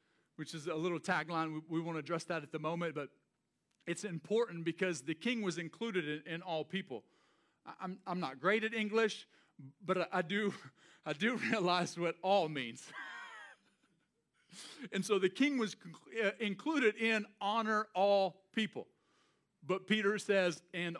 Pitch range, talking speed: 155-200 Hz, 150 wpm